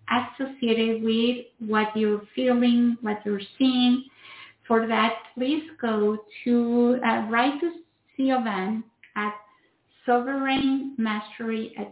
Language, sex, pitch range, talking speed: English, female, 220-275 Hz, 105 wpm